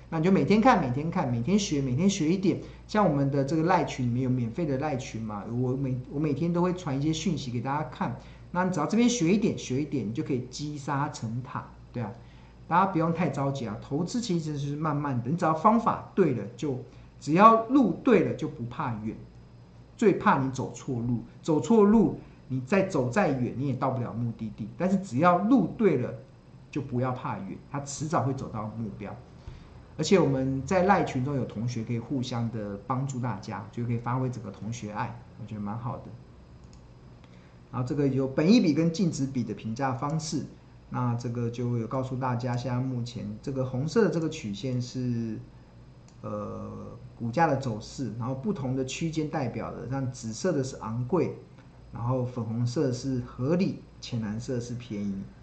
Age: 50-69